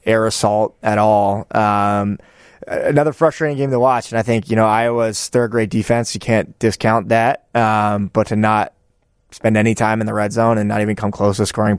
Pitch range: 105-115 Hz